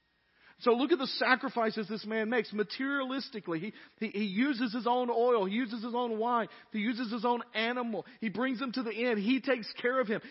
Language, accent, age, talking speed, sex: English, American, 40-59, 215 wpm, male